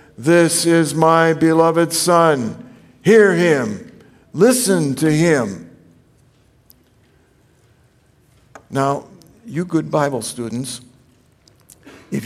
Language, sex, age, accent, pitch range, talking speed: English, male, 60-79, American, 130-160 Hz, 80 wpm